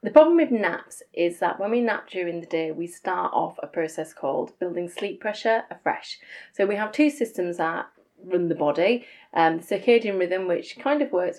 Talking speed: 205 wpm